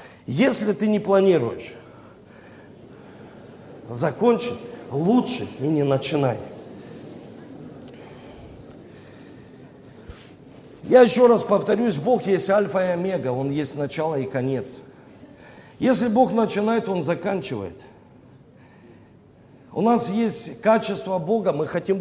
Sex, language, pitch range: male, Russian, 185-255 Hz